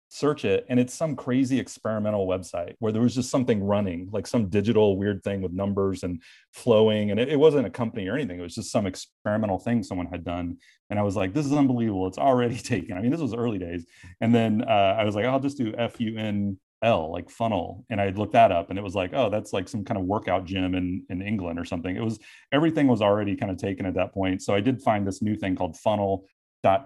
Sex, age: male, 30-49